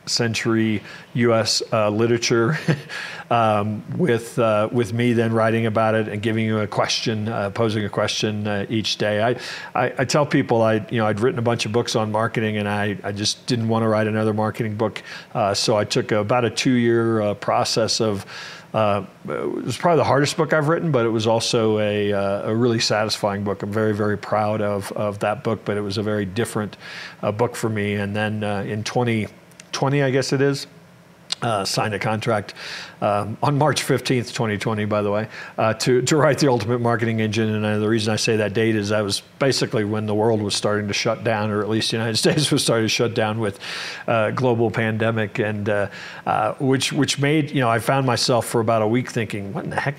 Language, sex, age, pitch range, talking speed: English, male, 50-69, 105-125 Hz, 220 wpm